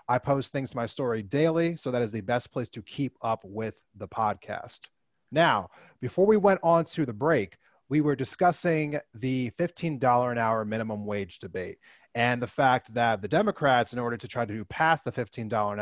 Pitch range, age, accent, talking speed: 110-140 Hz, 30-49, American, 195 wpm